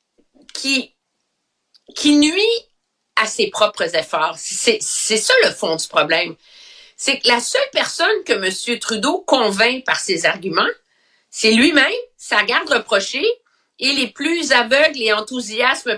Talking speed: 145 wpm